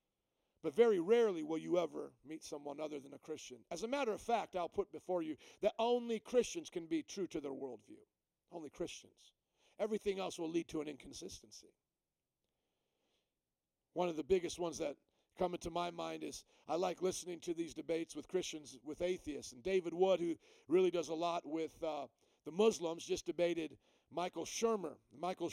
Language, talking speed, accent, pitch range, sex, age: English, 180 wpm, American, 170-260 Hz, male, 50-69